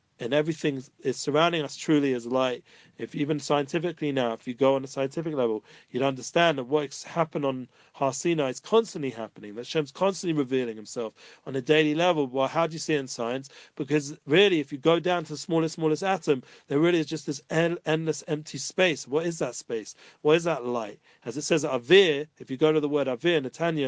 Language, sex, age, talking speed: English, male, 40-59, 215 wpm